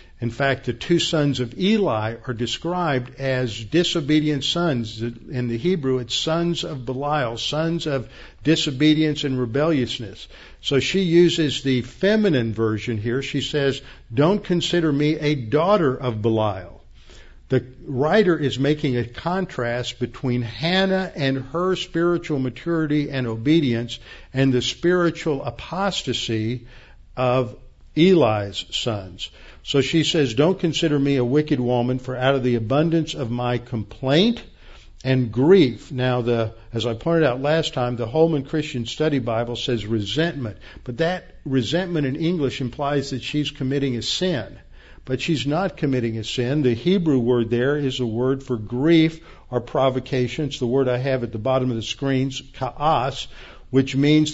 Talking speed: 150 wpm